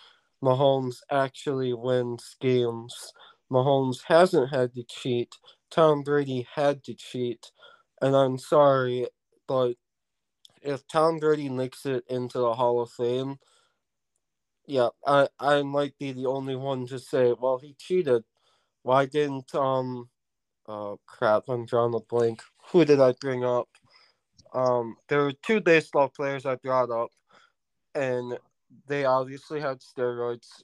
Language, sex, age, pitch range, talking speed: English, male, 20-39, 125-140 Hz, 135 wpm